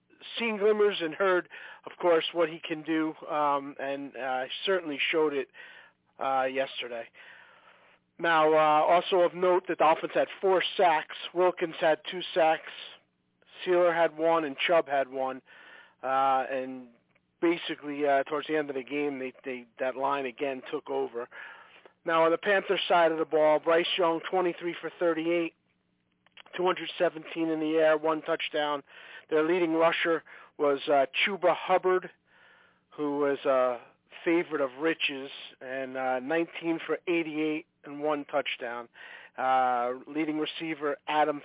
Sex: male